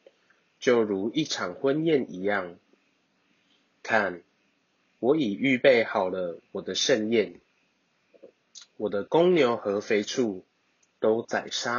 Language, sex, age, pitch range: Chinese, male, 20-39, 100-135 Hz